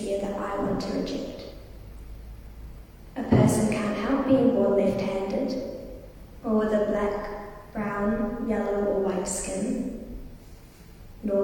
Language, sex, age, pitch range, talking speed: English, female, 20-39, 210-260 Hz, 115 wpm